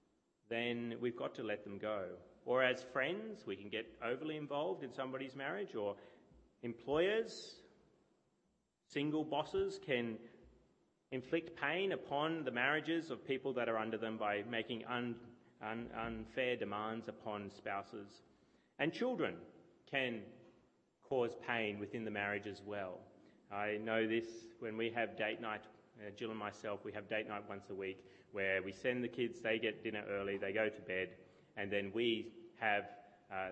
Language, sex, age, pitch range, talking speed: English, male, 30-49, 105-135 Hz, 155 wpm